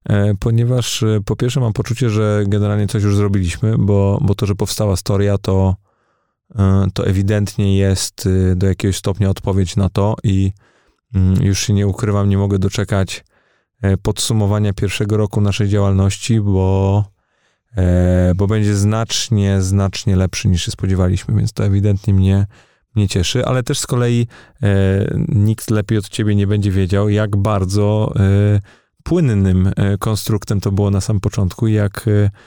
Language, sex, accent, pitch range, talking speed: Polish, male, native, 100-110 Hz, 140 wpm